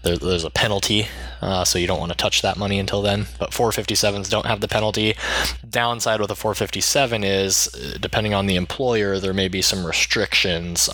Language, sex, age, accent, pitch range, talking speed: English, male, 20-39, American, 90-105 Hz, 185 wpm